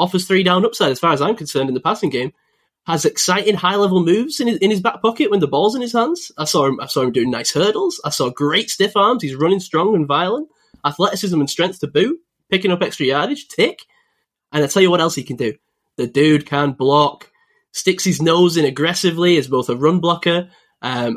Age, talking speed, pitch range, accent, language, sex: 10-29, 230 wpm, 150-205 Hz, British, English, male